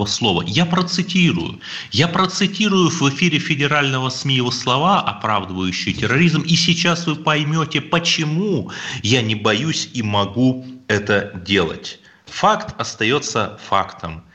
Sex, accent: male, native